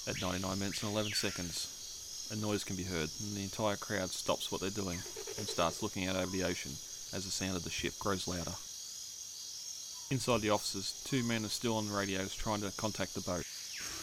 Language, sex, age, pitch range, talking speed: English, male, 20-39, 95-110 Hz, 210 wpm